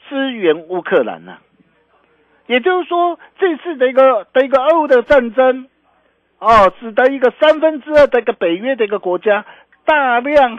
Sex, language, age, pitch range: male, Chinese, 50-69, 205-305 Hz